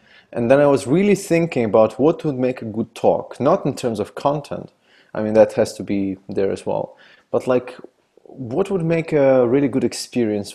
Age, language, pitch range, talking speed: 30-49, English, 100-125 Hz, 205 wpm